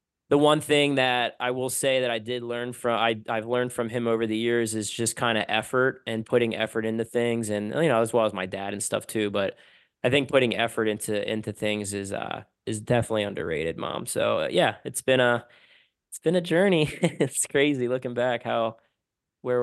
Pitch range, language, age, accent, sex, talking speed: 110-130 Hz, English, 20-39, American, male, 215 wpm